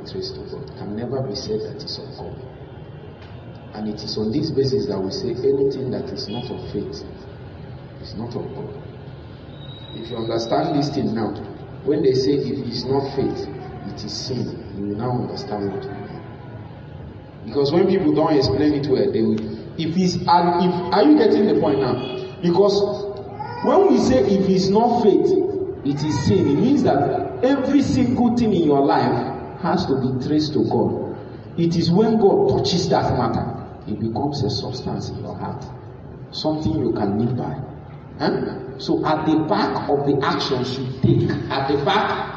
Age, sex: 40-59, male